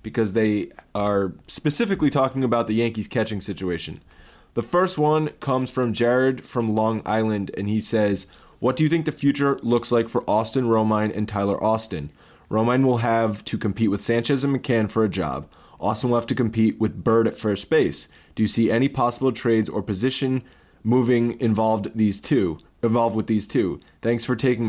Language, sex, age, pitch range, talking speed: English, male, 20-39, 105-130 Hz, 185 wpm